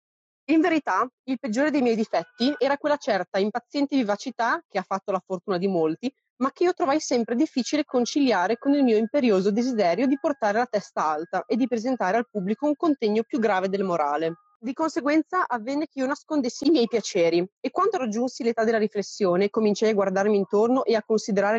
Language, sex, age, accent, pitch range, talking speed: Italian, female, 30-49, native, 200-275 Hz, 195 wpm